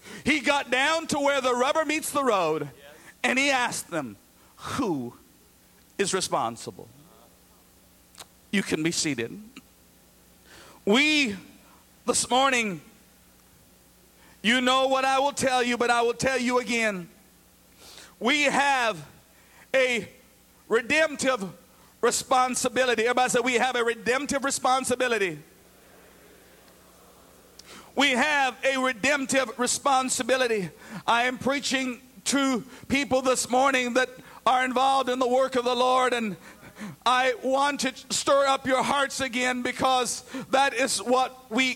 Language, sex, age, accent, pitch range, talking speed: English, male, 50-69, American, 235-270 Hz, 120 wpm